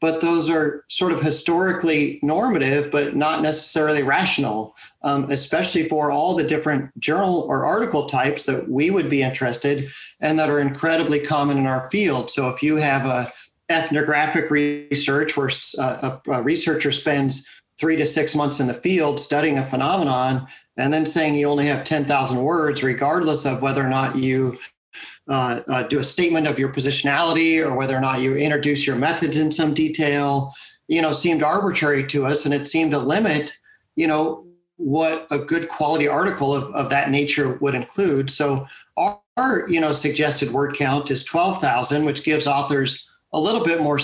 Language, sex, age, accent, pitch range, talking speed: English, male, 40-59, American, 140-155 Hz, 175 wpm